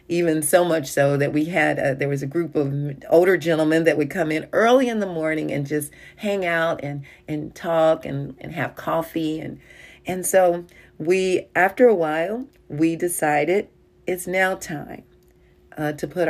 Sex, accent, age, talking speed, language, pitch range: female, American, 40-59, 180 wpm, English, 145-175 Hz